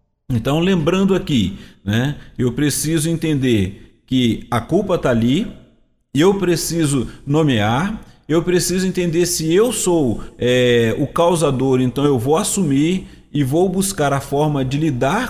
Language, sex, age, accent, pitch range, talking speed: Portuguese, male, 40-59, Brazilian, 125-170 Hz, 135 wpm